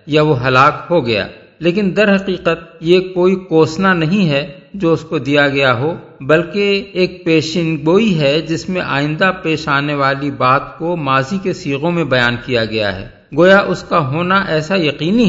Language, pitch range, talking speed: Urdu, 140-180 Hz, 175 wpm